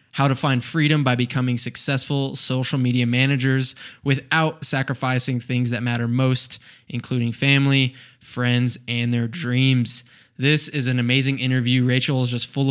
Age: 20-39